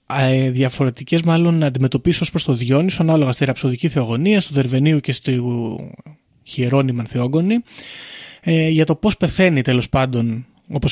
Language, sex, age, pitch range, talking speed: Greek, male, 20-39, 130-160 Hz, 135 wpm